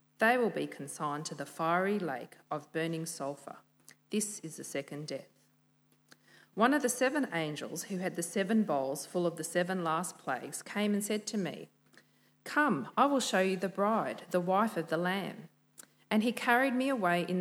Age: 40-59